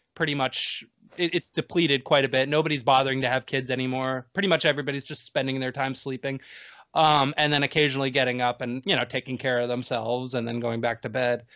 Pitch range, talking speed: 130-155 Hz, 210 wpm